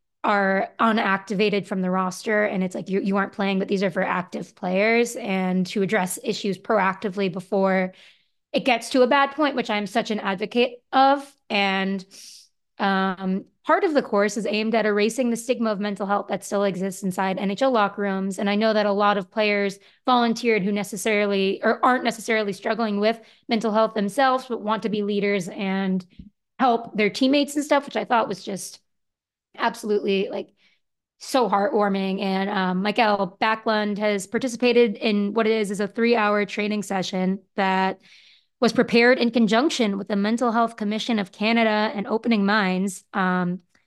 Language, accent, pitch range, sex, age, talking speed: English, American, 195-230 Hz, female, 20-39, 175 wpm